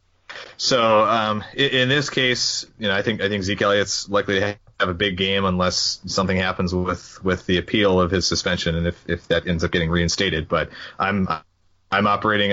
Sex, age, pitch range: male, 30-49, 90-100 Hz